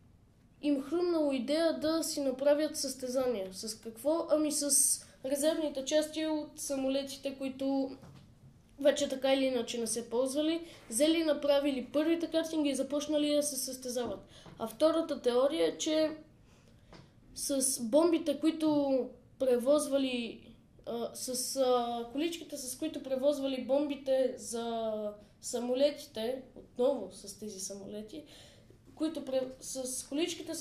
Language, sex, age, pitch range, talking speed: Bulgarian, female, 20-39, 250-295 Hz, 110 wpm